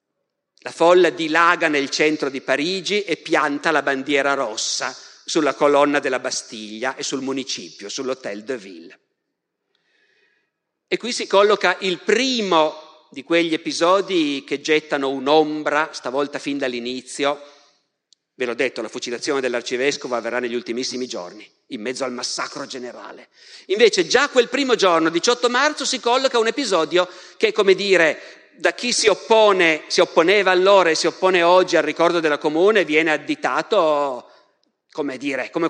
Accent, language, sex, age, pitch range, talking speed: native, Italian, male, 50-69, 145-205 Hz, 145 wpm